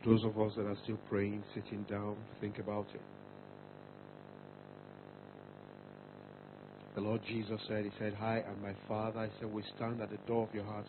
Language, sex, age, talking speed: English, male, 50-69, 175 wpm